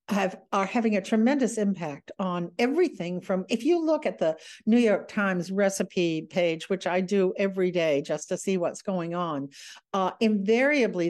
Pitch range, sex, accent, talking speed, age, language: 165-205 Hz, female, American, 175 wpm, 60-79, English